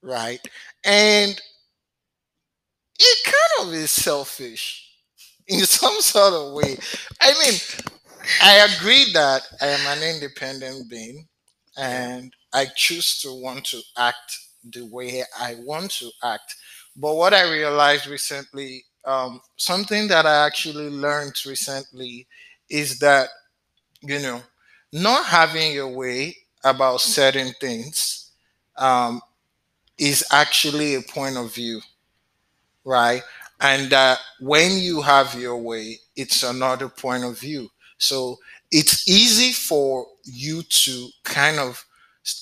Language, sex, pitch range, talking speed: English, male, 130-160 Hz, 120 wpm